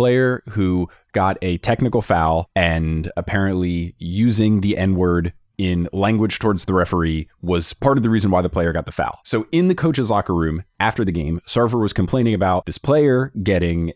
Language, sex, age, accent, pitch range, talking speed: English, male, 20-39, American, 90-135 Hz, 190 wpm